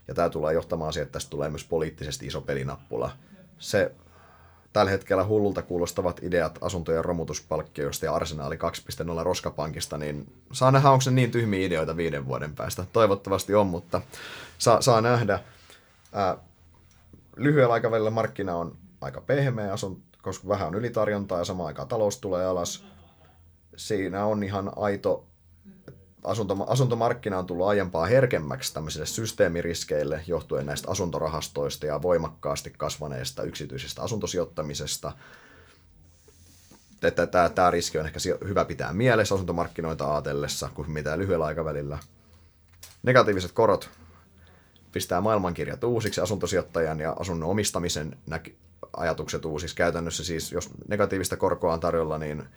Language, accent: Finnish, native